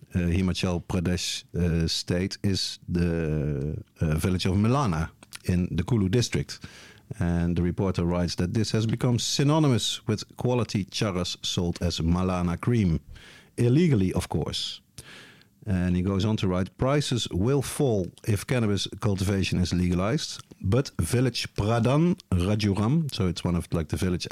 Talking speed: 145 wpm